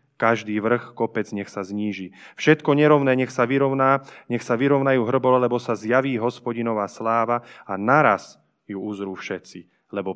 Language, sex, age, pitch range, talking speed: Slovak, male, 20-39, 105-135 Hz, 155 wpm